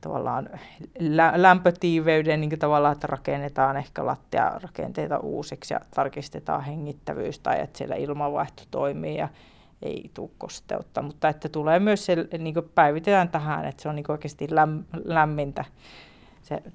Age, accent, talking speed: 30-49, native, 135 wpm